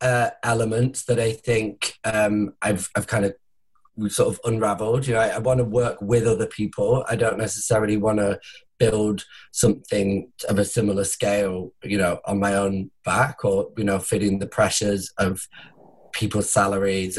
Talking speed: 170 wpm